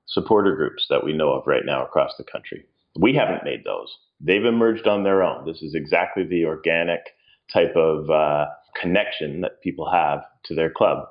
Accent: American